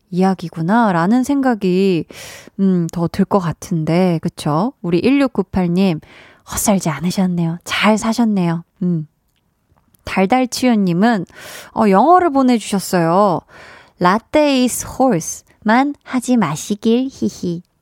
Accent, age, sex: native, 20-39, female